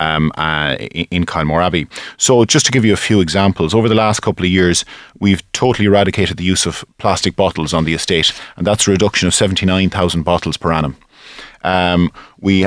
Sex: male